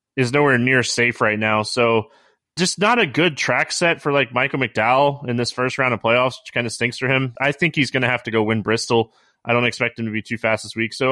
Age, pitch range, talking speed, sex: 30-49, 115-145 Hz, 265 wpm, male